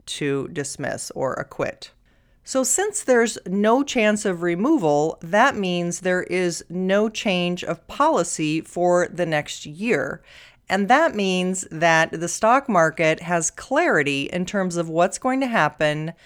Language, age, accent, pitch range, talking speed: English, 40-59, American, 165-220 Hz, 145 wpm